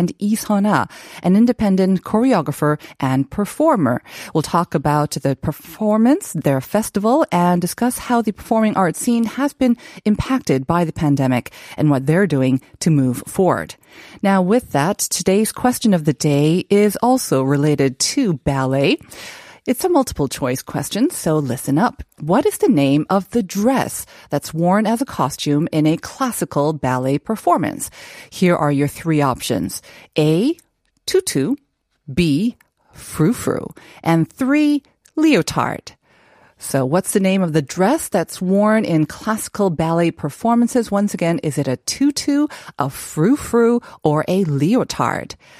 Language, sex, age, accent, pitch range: Korean, female, 40-59, American, 150-220 Hz